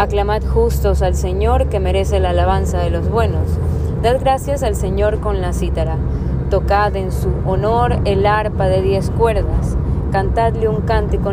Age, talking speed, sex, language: 20-39, 160 wpm, female, Spanish